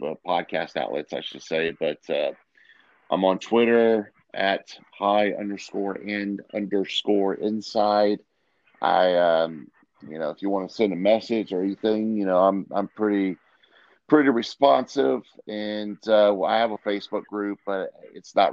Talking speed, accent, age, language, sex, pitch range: 150 wpm, American, 40-59, English, male, 95-105 Hz